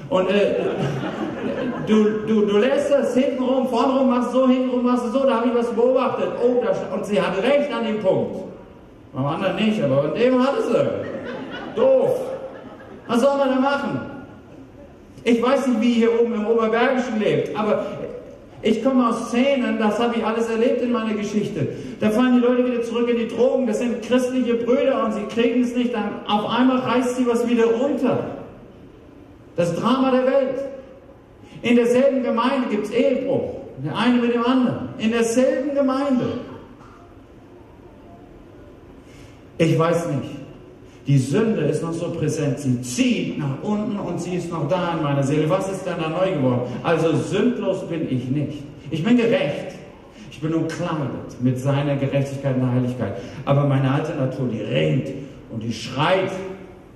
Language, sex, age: German, male, 50-69